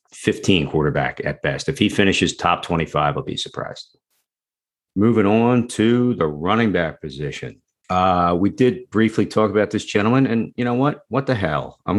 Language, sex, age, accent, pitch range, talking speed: English, male, 50-69, American, 85-115 Hz, 175 wpm